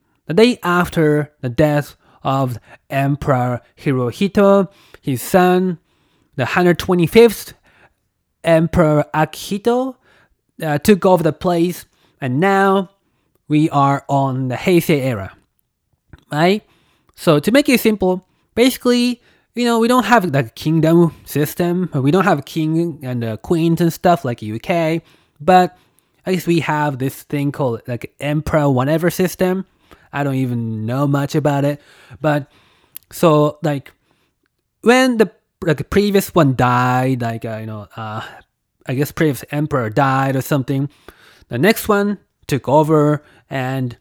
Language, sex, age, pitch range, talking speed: English, male, 20-39, 135-185 Hz, 135 wpm